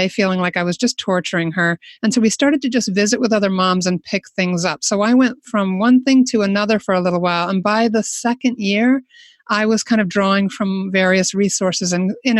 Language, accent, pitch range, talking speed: English, American, 180-235 Hz, 230 wpm